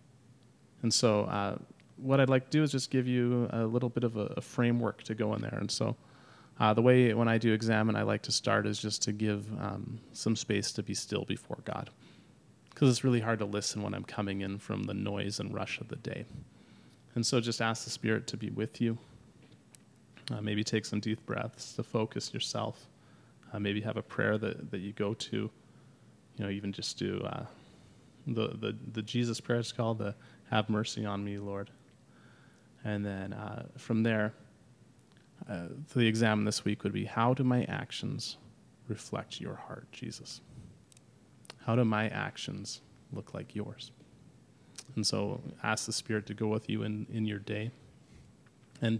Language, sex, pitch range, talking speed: English, male, 105-120 Hz, 190 wpm